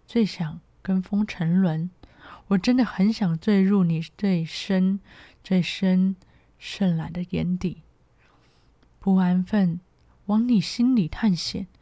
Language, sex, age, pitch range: Chinese, female, 20-39, 170-215 Hz